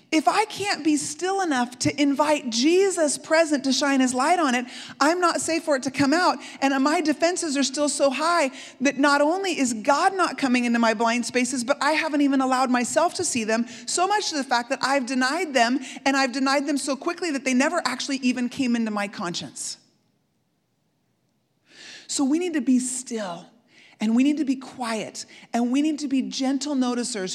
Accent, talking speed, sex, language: American, 205 wpm, female, English